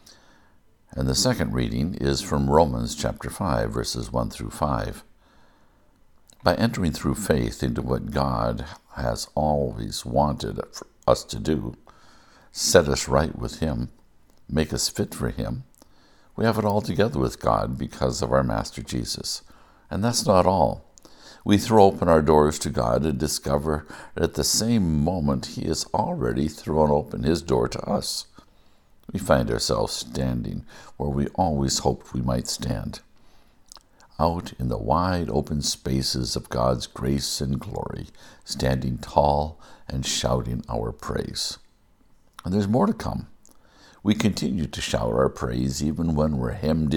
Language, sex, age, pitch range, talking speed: English, male, 60-79, 65-80 Hz, 150 wpm